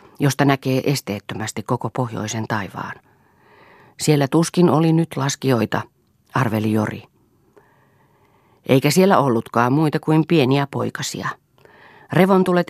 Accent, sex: native, female